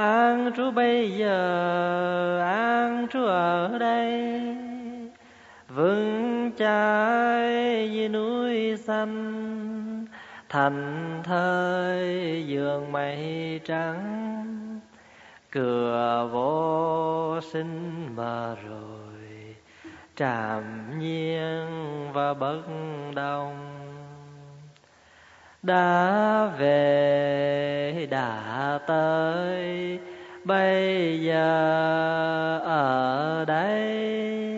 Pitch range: 145-215 Hz